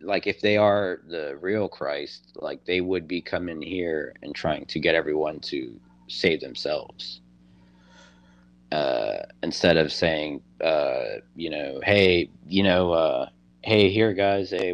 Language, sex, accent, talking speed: English, male, American, 145 wpm